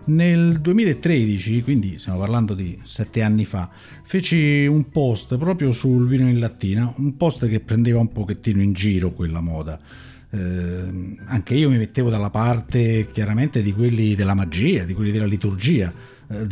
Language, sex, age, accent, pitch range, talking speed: Italian, male, 50-69, native, 105-135 Hz, 160 wpm